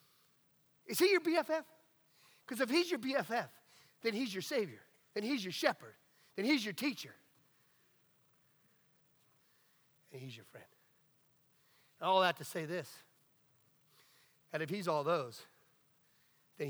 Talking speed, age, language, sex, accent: 135 wpm, 40-59, English, male, American